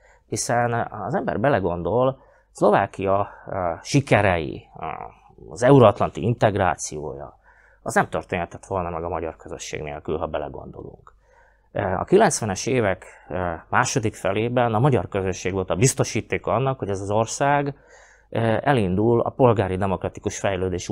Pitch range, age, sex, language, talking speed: 95-130 Hz, 30-49, male, Hungarian, 120 wpm